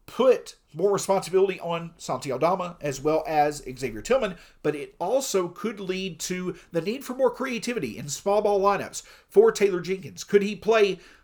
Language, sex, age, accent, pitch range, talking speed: English, male, 50-69, American, 155-205 Hz, 170 wpm